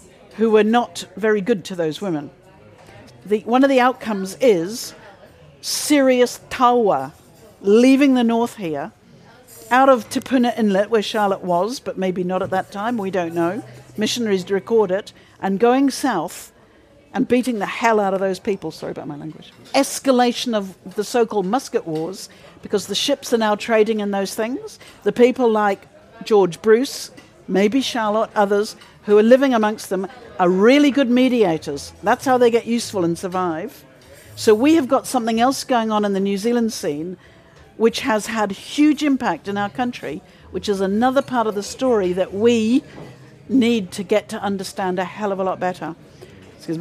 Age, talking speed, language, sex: 50-69, 170 wpm, English, female